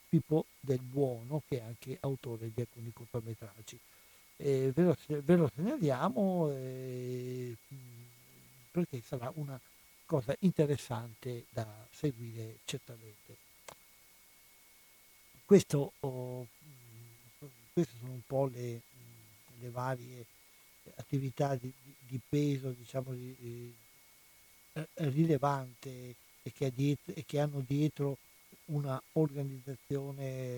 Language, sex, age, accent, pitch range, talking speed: Italian, male, 60-79, native, 120-140 Hz, 95 wpm